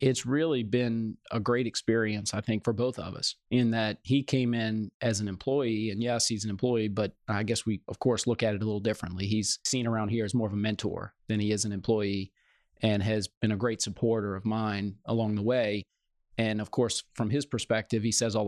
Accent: American